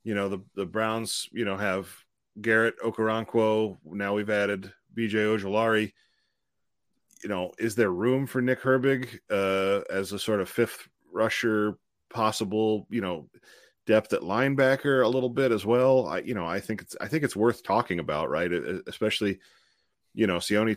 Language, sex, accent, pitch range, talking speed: English, male, American, 90-110 Hz, 175 wpm